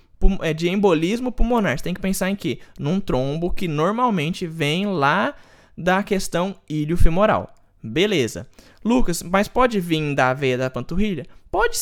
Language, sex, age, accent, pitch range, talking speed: Portuguese, male, 20-39, Brazilian, 155-220 Hz, 140 wpm